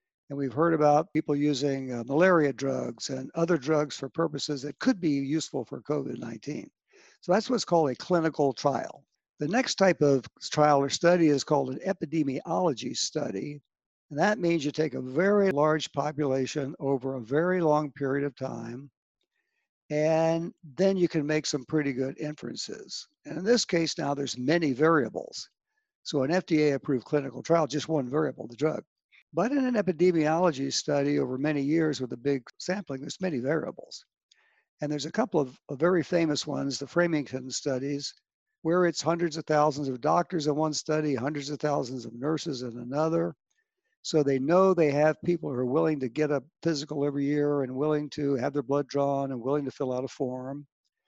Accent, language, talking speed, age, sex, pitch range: American, English, 180 wpm, 60-79, male, 140-170 Hz